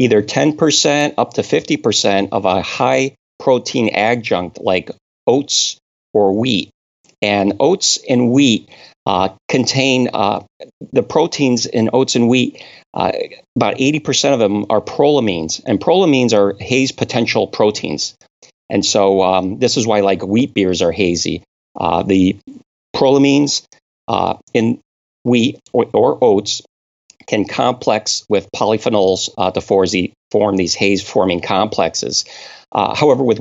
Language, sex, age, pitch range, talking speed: English, male, 40-59, 95-125 Hz, 130 wpm